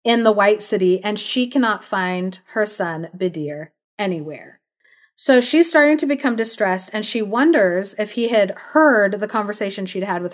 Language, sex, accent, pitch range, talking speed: English, female, American, 185-235 Hz, 175 wpm